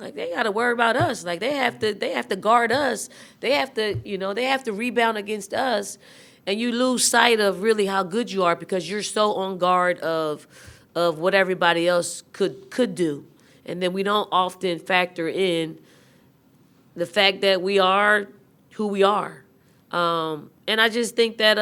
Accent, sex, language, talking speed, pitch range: American, female, English, 195 wpm, 160-195 Hz